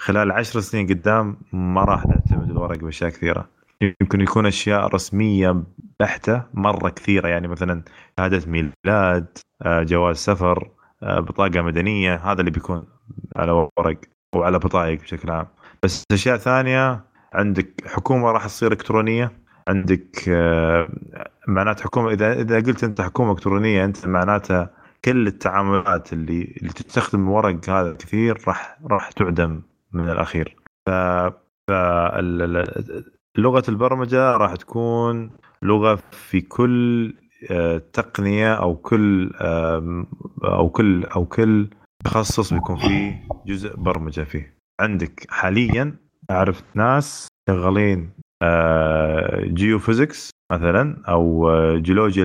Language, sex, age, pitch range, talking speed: Arabic, male, 30-49, 85-110 Hz, 110 wpm